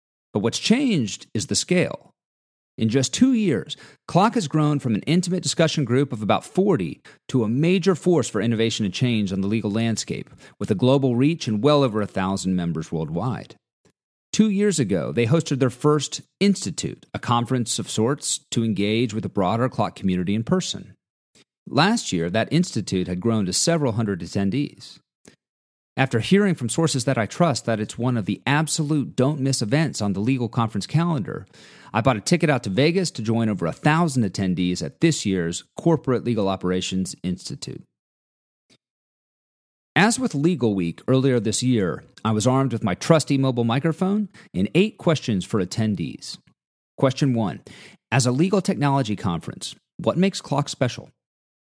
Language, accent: English, American